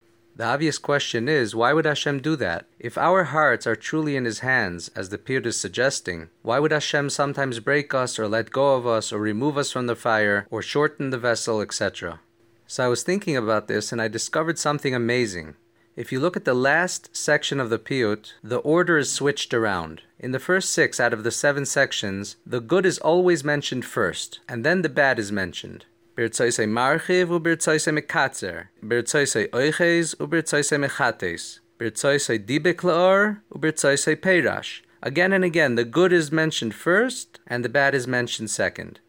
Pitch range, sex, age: 115-155 Hz, male, 30-49